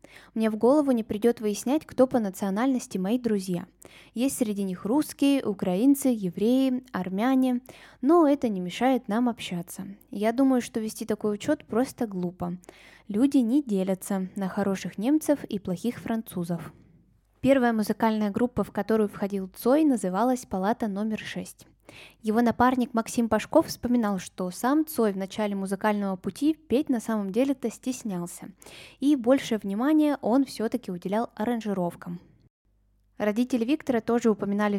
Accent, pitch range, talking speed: native, 195-245 Hz, 140 wpm